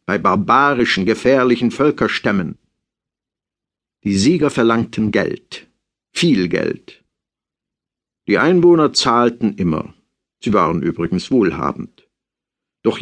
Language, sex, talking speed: German, male, 90 wpm